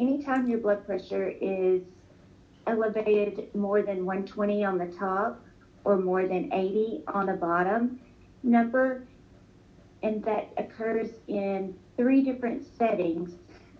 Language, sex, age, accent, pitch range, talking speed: English, female, 40-59, American, 180-220 Hz, 115 wpm